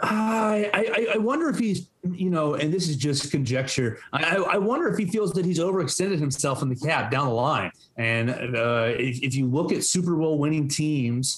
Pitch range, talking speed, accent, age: 125-160 Hz, 210 wpm, American, 30-49